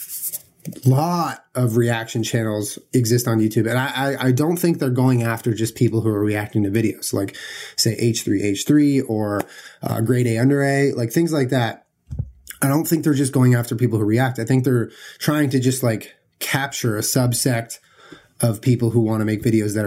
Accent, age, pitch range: American, 30-49, 115-140 Hz